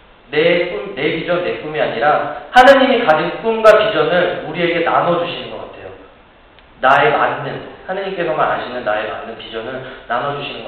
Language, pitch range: Korean, 140-195 Hz